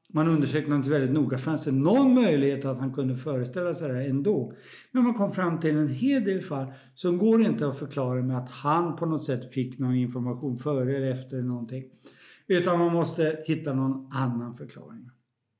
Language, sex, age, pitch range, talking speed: Swedish, male, 50-69, 135-185 Hz, 195 wpm